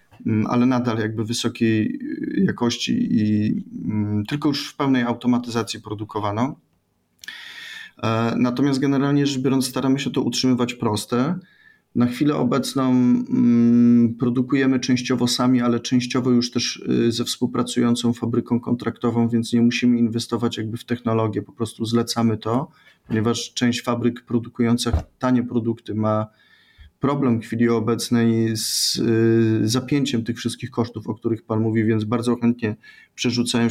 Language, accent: Polish, native